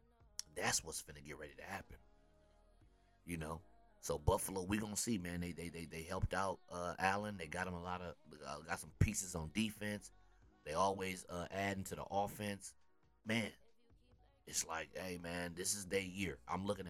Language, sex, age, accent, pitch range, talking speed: English, male, 30-49, American, 75-90 Hz, 200 wpm